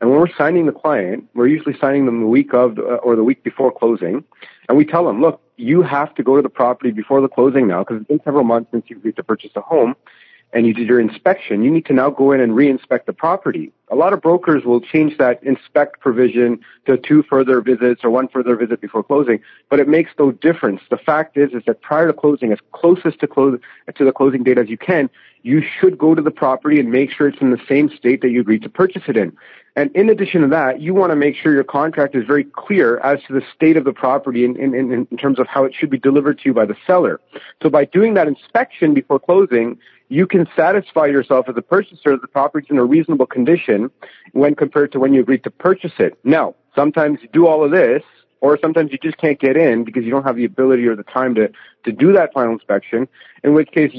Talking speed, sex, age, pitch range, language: 250 wpm, male, 40-59, 130-155 Hz, English